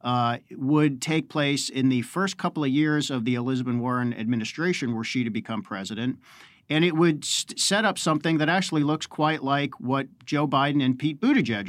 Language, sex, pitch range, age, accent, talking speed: English, male, 125-150 Hz, 50-69, American, 195 wpm